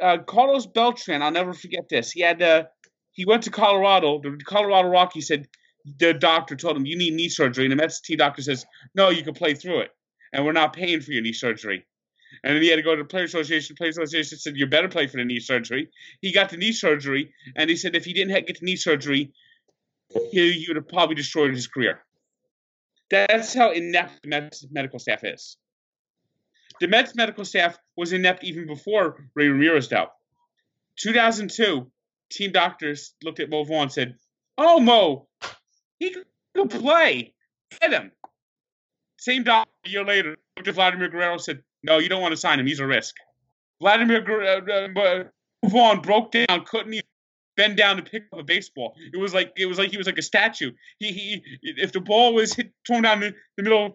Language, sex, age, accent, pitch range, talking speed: English, male, 30-49, American, 155-210 Hz, 200 wpm